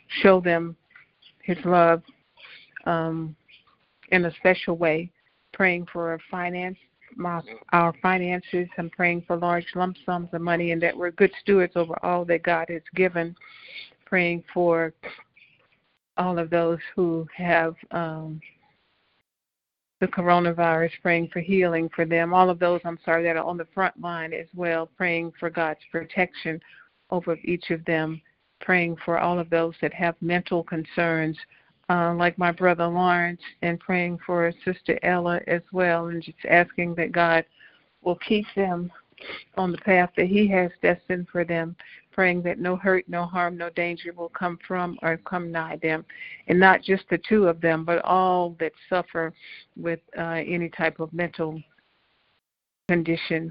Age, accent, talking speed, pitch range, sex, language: 50-69, American, 155 wpm, 165-180 Hz, female, English